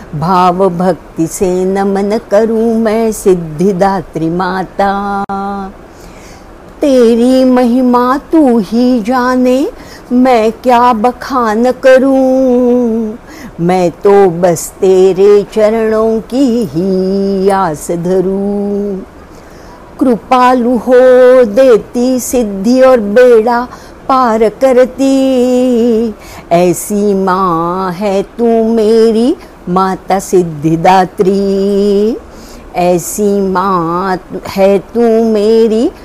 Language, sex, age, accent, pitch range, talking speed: English, female, 50-69, Indian, 190-245 Hz, 75 wpm